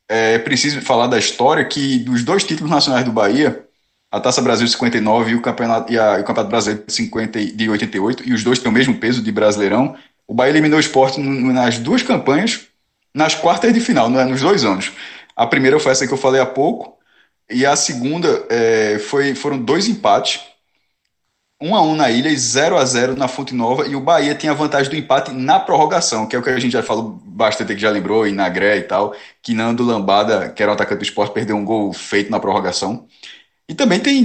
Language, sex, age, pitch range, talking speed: Portuguese, male, 20-39, 115-145 Hz, 215 wpm